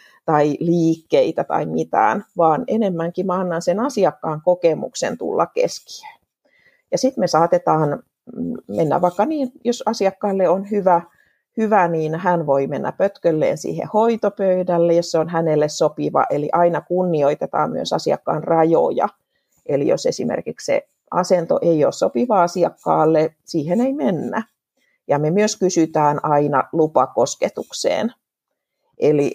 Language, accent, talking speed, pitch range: Finnish, native, 125 wpm, 155-195 Hz